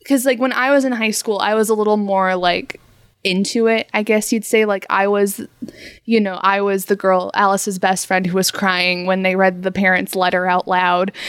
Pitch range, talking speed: 195-245 Hz, 230 wpm